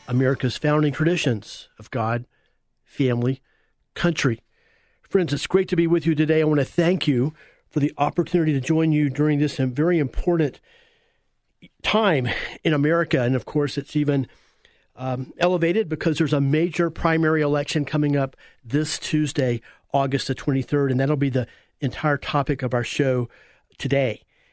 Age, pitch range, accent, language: 50-69, 135-165 Hz, American, English